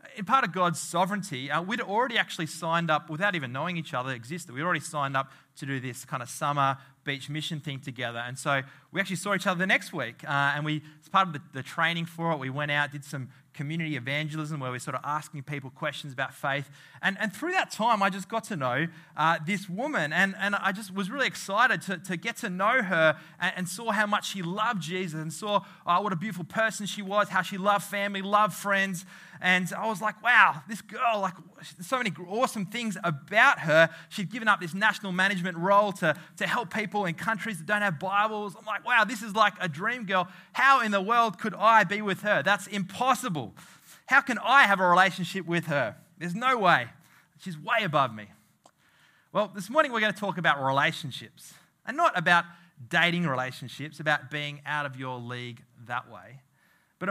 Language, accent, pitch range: English, Australian, 150-205 Hz